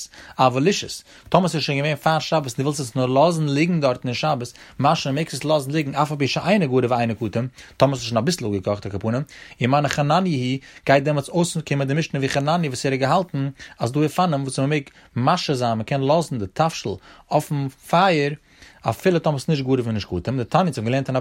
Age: 30-49